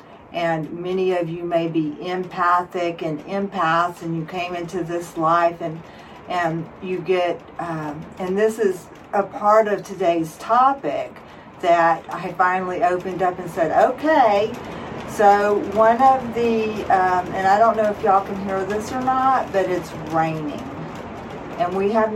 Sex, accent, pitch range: female, American, 175-215 Hz